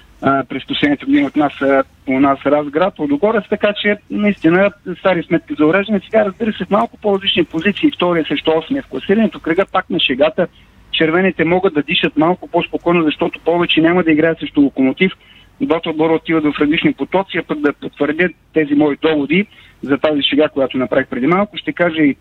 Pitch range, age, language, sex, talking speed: 145-180 Hz, 40-59, Bulgarian, male, 180 wpm